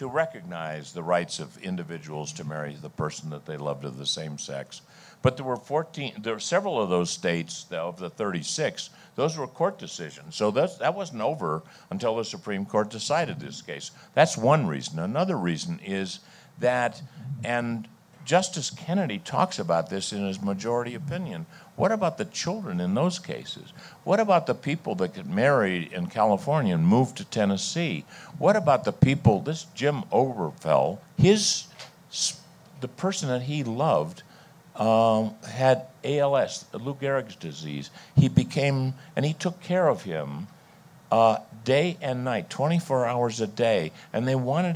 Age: 60-79